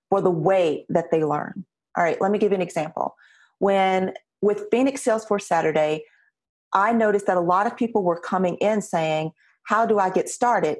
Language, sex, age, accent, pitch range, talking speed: English, female, 40-59, American, 190-245 Hz, 190 wpm